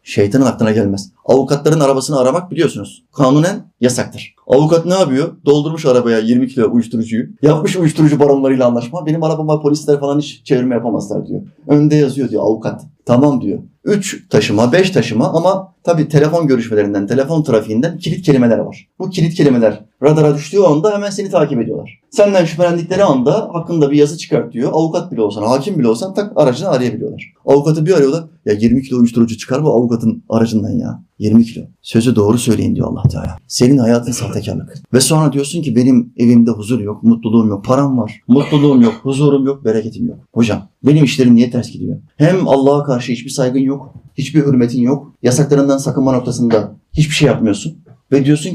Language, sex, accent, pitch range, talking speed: Turkish, male, native, 120-155 Hz, 170 wpm